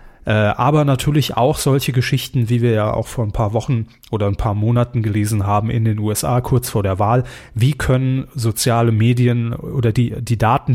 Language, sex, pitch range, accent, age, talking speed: German, male, 115-140 Hz, German, 30-49, 190 wpm